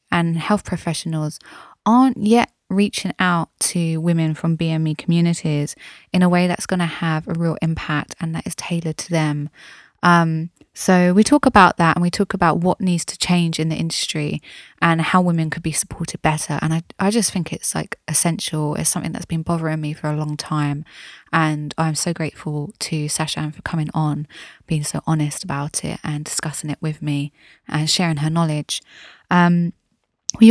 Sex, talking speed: female, 185 wpm